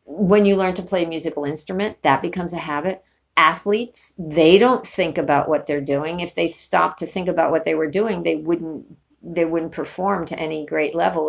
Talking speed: 200 wpm